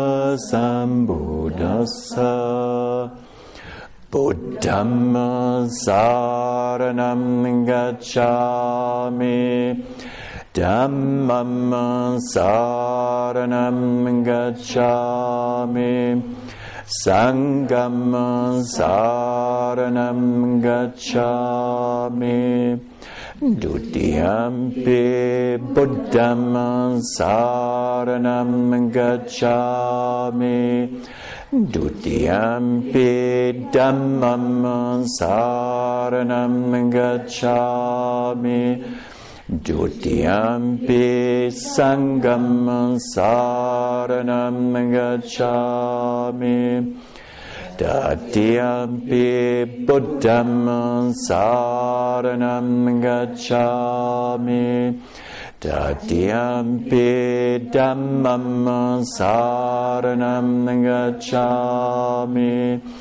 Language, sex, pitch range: English, male, 120-125 Hz